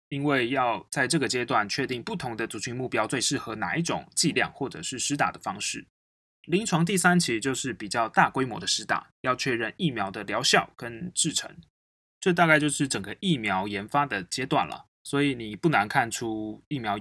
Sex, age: male, 20-39